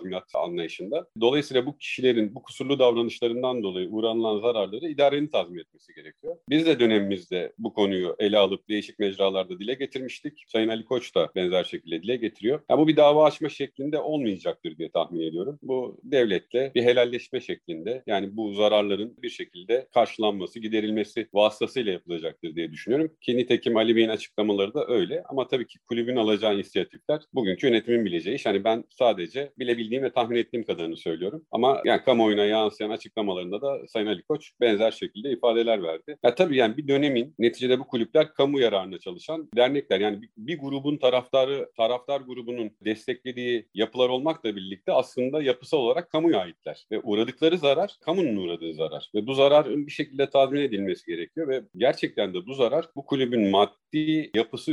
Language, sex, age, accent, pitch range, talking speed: Turkish, male, 40-59, native, 110-145 Hz, 165 wpm